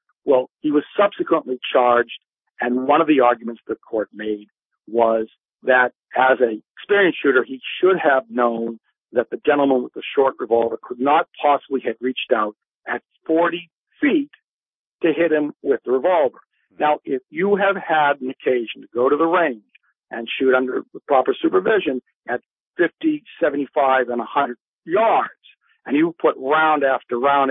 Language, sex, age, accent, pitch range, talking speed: English, male, 50-69, American, 125-170 Hz, 160 wpm